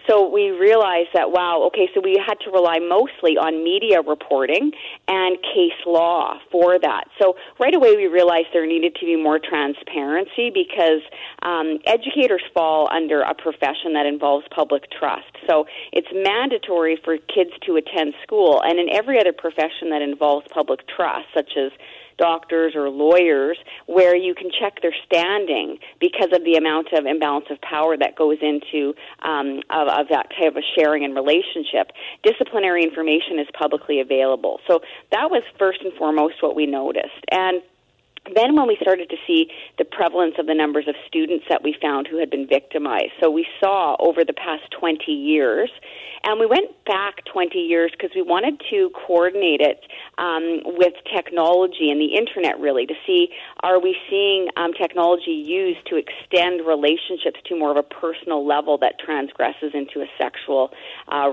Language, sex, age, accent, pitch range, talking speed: English, female, 40-59, American, 150-195 Hz, 170 wpm